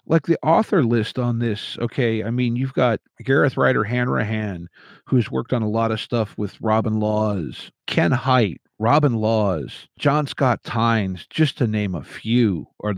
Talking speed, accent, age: 170 wpm, American, 50-69